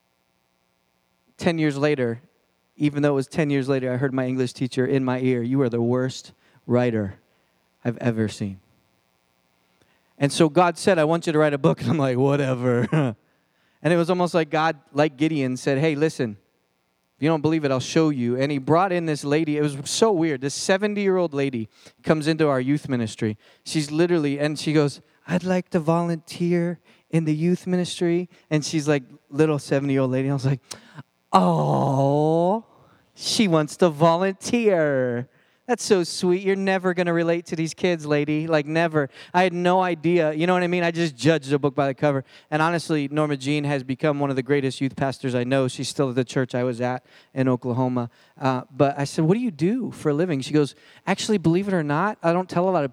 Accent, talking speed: American, 215 wpm